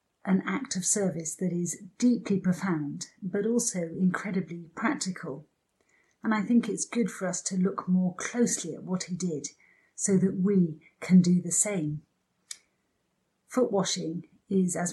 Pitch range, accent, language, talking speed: 175-200 Hz, British, English, 155 wpm